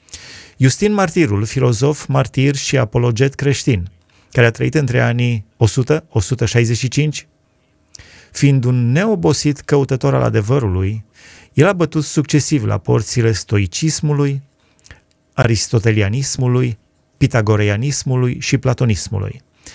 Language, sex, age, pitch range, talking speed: Romanian, male, 30-49, 105-140 Hz, 90 wpm